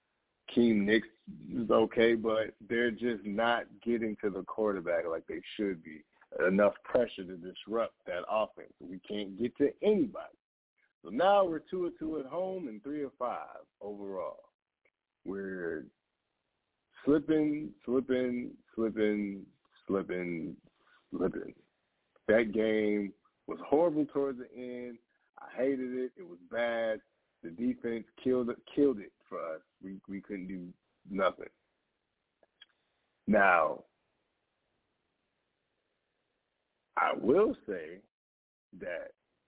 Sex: male